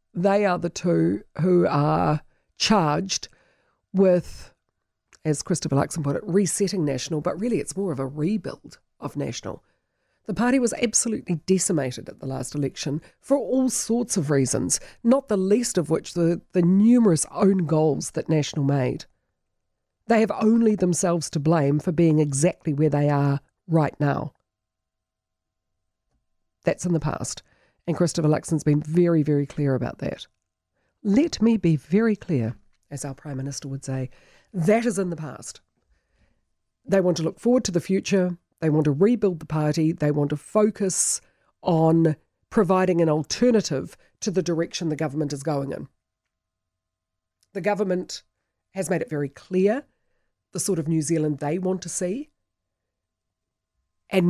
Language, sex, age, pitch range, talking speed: English, female, 40-59, 140-190 Hz, 155 wpm